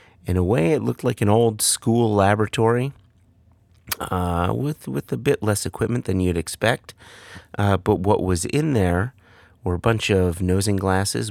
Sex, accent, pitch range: male, American, 85-100 Hz